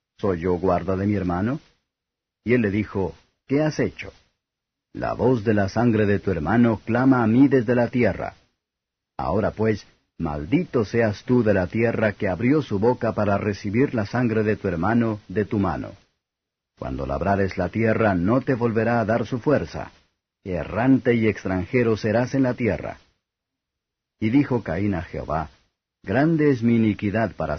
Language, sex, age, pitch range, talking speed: Spanish, male, 50-69, 95-120 Hz, 165 wpm